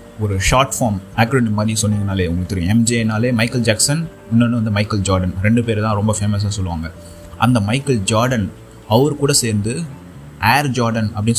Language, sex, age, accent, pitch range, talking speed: Tamil, male, 30-49, native, 105-130 Hz, 160 wpm